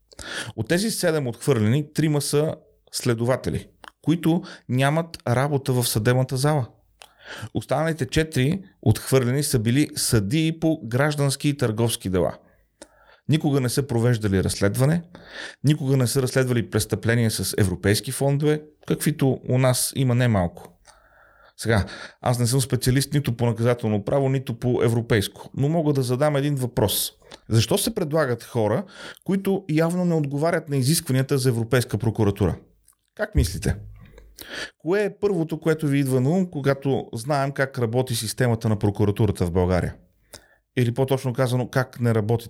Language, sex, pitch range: Bulgarian, male, 115-150 Hz